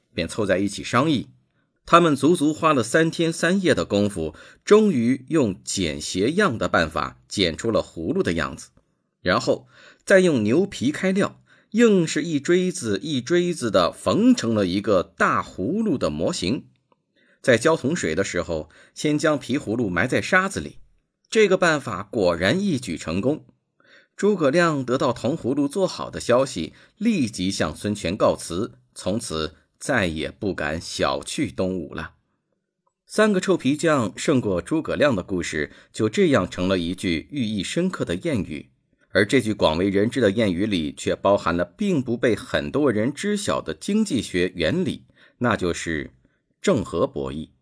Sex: male